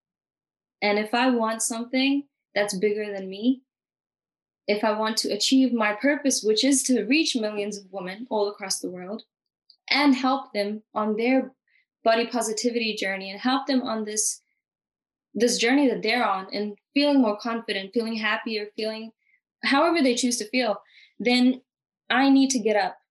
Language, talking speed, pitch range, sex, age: English, 165 wpm, 205-255 Hz, female, 10-29